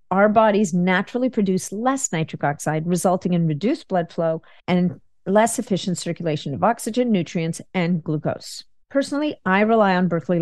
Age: 50-69